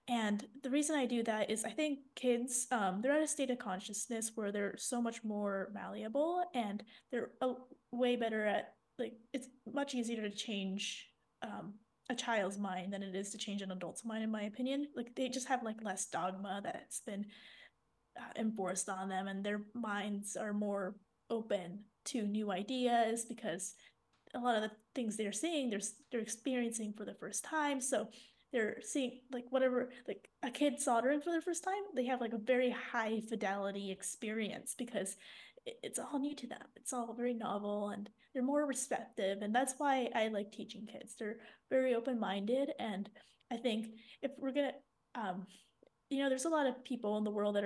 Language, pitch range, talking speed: English, 205-260 Hz, 190 wpm